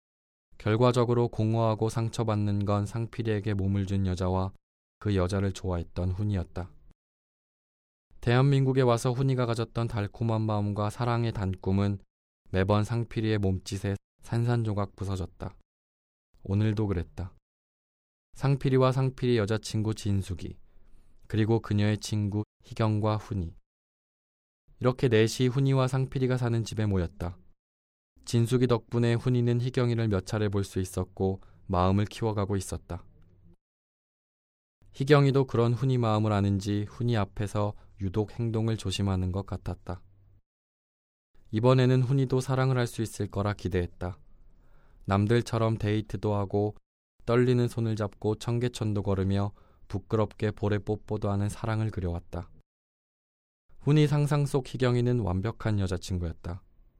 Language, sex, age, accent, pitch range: Korean, male, 20-39, native, 95-115 Hz